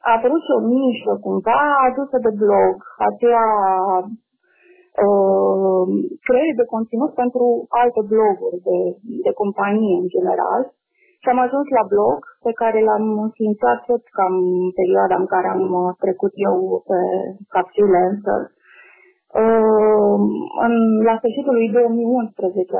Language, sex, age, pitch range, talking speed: Romanian, female, 30-49, 200-265 Hz, 120 wpm